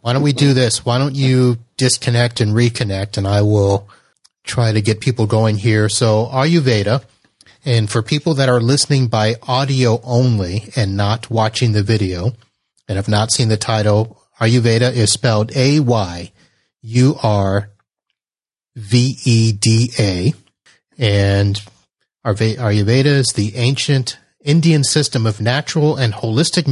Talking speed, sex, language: 130 wpm, male, English